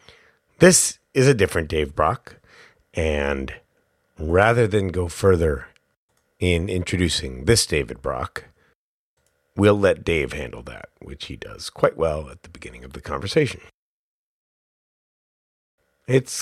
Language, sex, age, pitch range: English, male, 30-49, 70-105 Hz